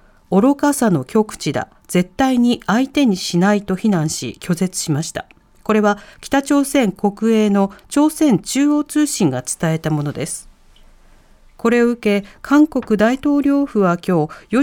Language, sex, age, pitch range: Japanese, female, 40-59, 175-265 Hz